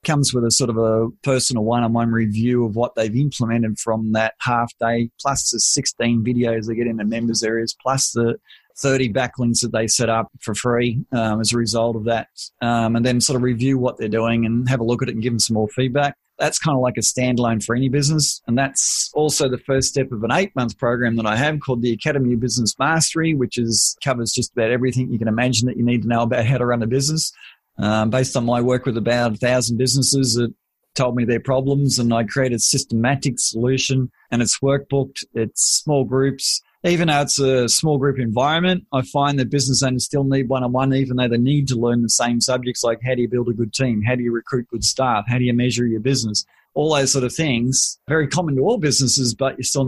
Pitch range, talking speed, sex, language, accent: 115-135 Hz, 235 wpm, male, English, Australian